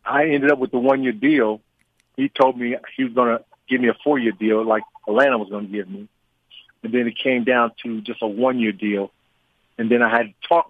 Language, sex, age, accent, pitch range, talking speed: English, male, 50-69, American, 115-135 Hz, 235 wpm